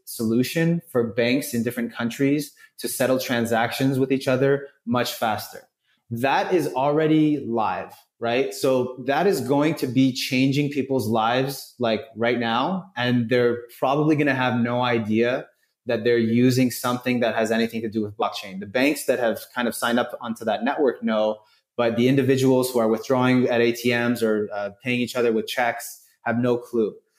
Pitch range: 115-135 Hz